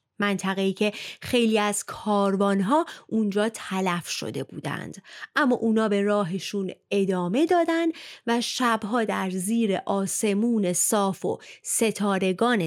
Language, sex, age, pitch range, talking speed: Persian, female, 30-49, 190-270 Hz, 110 wpm